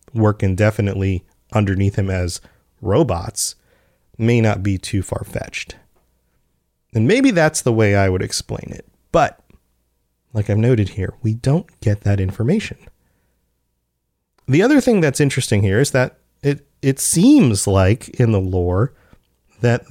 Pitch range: 100-130 Hz